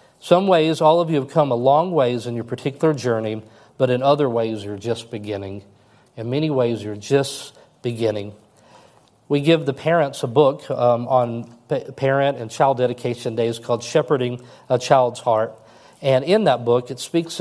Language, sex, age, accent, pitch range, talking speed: English, male, 40-59, American, 120-145 Hz, 175 wpm